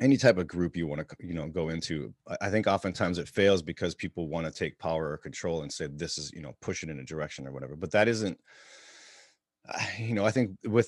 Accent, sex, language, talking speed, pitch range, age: American, male, English, 250 wpm, 85-105 Hz, 30-49